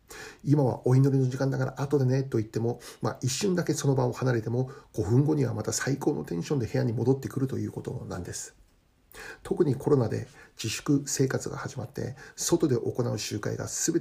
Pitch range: 110-135 Hz